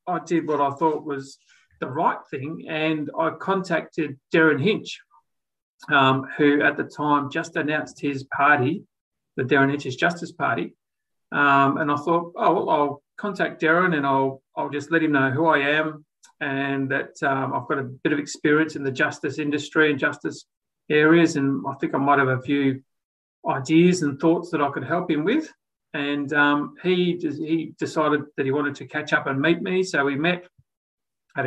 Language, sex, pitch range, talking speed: English, male, 140-165 Hz, 185 wpm